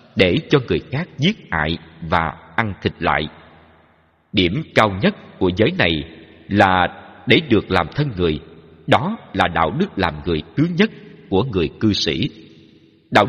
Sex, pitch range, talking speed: male, 80-125 Hz, 160 wpm